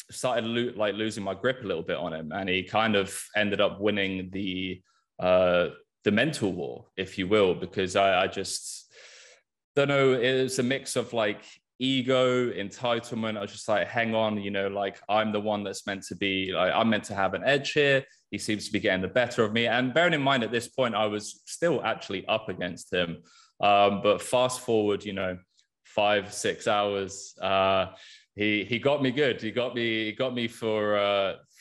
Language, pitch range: English, 95-110 Hz